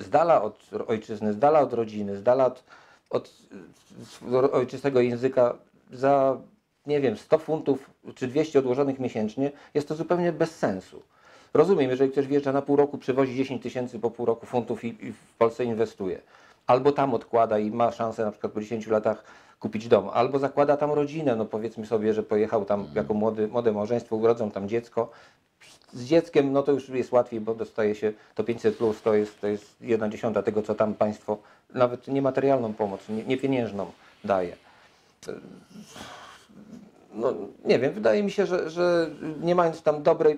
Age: 50-69